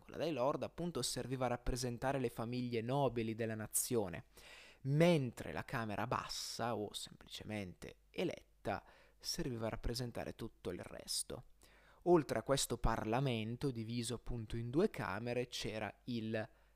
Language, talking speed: Italian, 125 wpm